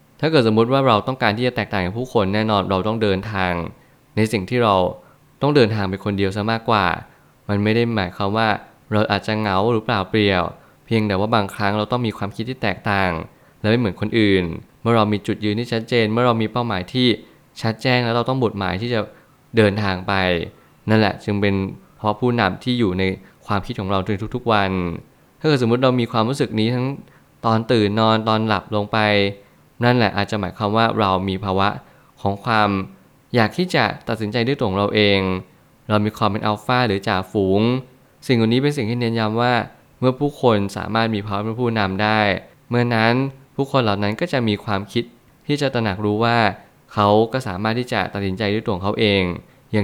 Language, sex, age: Thai, male, 20-39